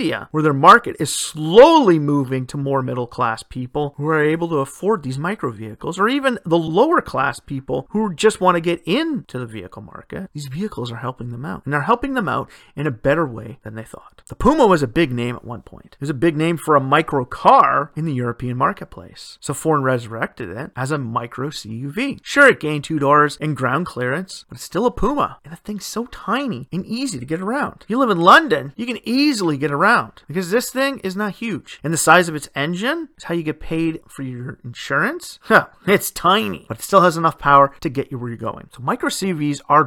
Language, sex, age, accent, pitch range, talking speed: English, male, 30-49, American, 135-200 Hz, 230 wpm